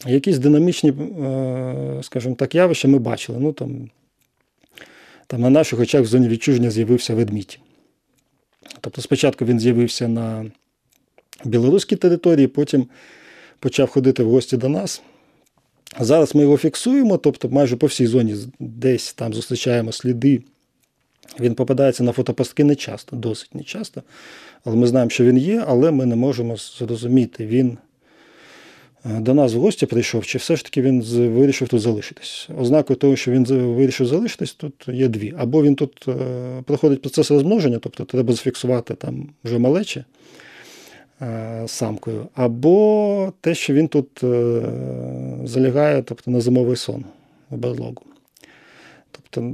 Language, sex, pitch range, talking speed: Ukrainian, male, 120-145 Hz, 140 wpm